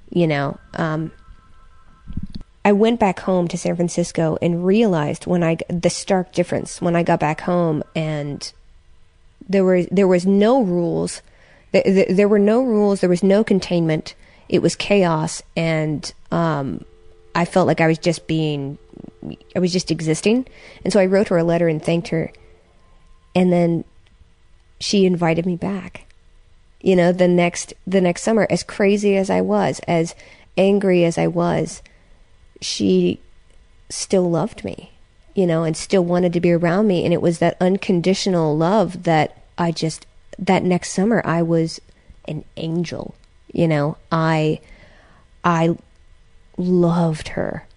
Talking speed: 150 wpm